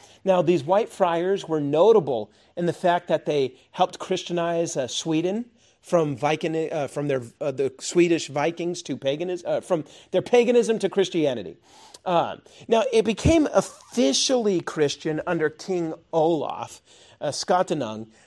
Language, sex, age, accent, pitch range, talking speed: English, male, 40-59, American, 145-190 Hz, 140 wpm